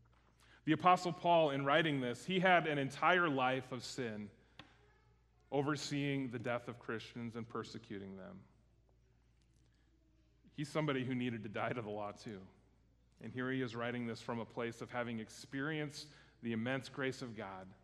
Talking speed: 160 wpm